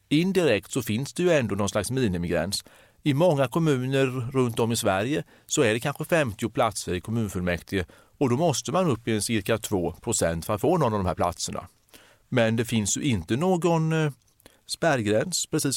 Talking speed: 185 wpm